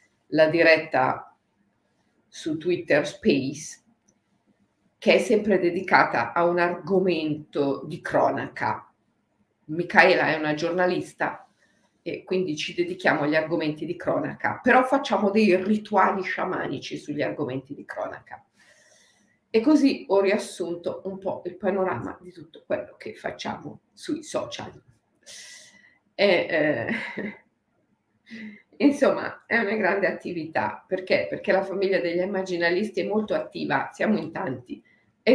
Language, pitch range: Italian, 170-215 Hz